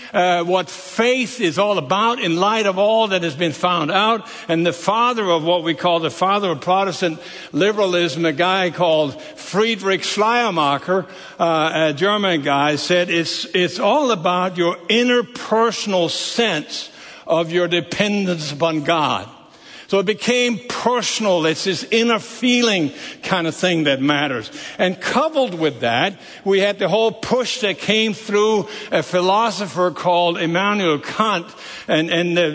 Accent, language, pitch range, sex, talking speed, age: American, English, 170-215 Hz, male, 150 wpm, 60-79